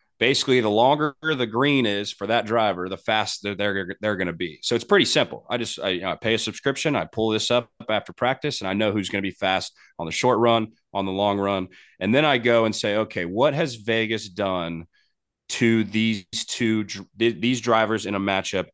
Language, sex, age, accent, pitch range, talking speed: English, male, 30-49, American, 95-115 Hz, 225 wpm